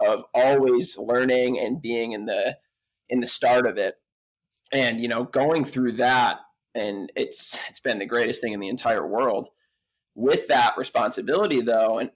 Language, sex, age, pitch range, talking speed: English, male, 20-39, 120-150 Hz, 170 wpm